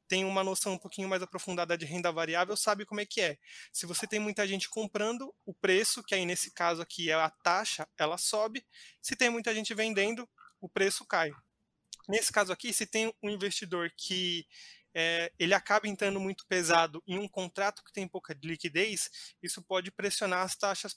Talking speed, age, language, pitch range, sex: 190 wpm, 20-39, Portuguese, 175-210 Hz, male